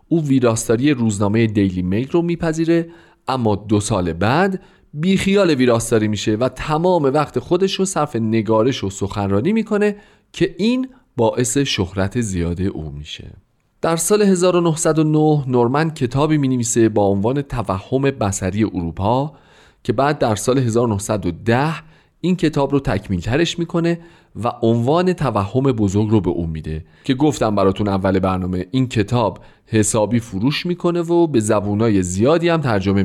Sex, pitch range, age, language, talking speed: male, 105-150 Hz, 40-59, Persian, 145 wpm